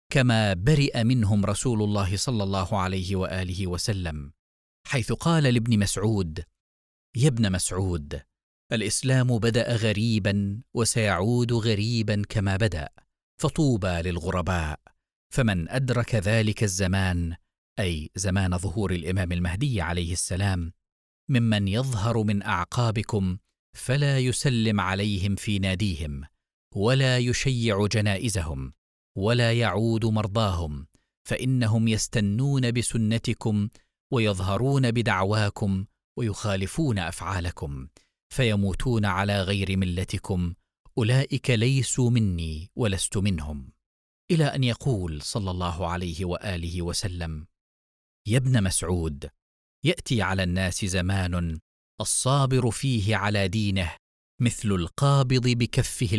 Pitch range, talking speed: 90-115 Hz, 95 wpm